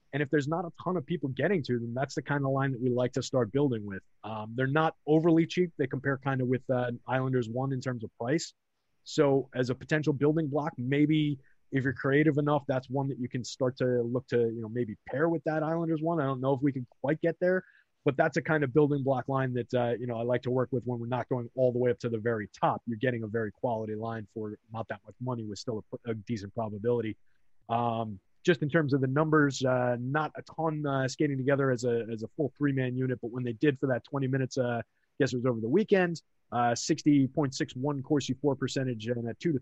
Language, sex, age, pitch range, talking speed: English, male, 30-49, 115-145 Hz, 255 wpm